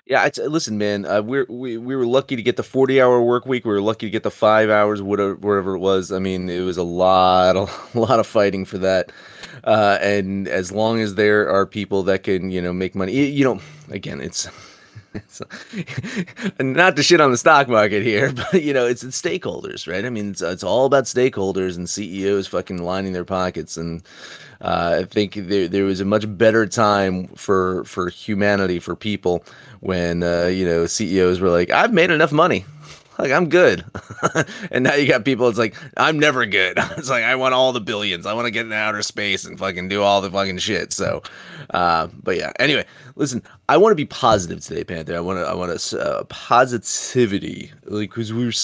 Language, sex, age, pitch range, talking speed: English, male, 30-49, 95-125 Hz, 215 wpm